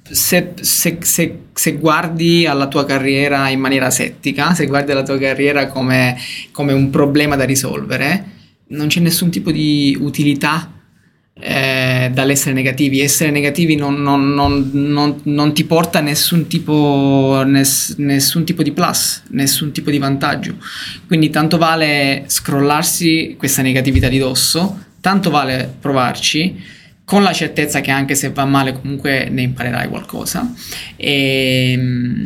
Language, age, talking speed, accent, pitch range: Italian, 20-39, 140 wpm, native, 135-165 Hz